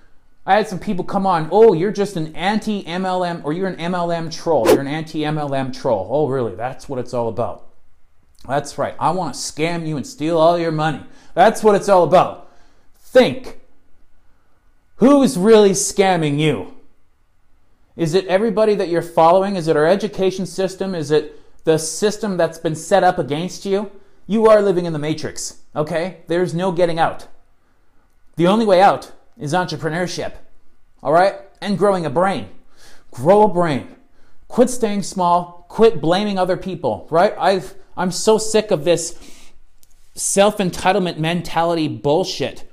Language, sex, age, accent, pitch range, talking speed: English, male, 30-49, American, 150-200 Hz, 160 wpm